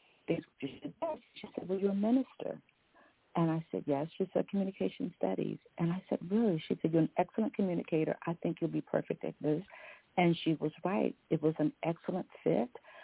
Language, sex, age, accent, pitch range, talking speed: English, female, 50-69, American, 150-185 Hz, 200 wpm